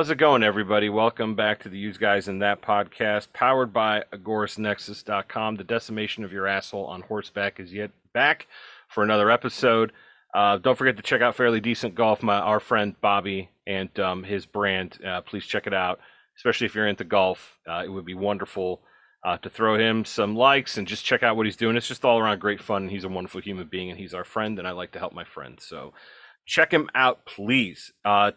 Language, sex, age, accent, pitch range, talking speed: English, male, 40-59, American, 100-140 Hz, 215 wpm